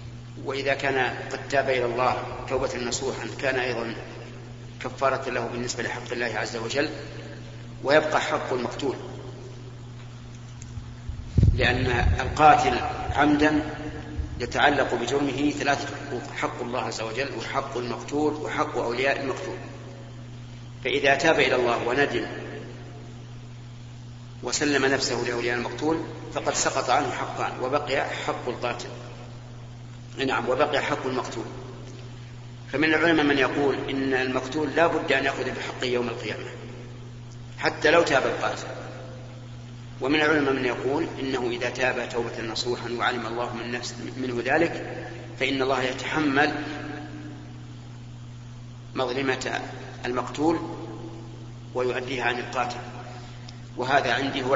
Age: 50-69